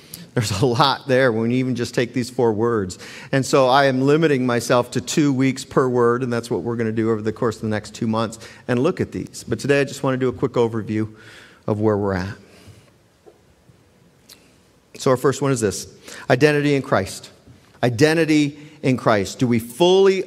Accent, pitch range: American, 125-175 Hz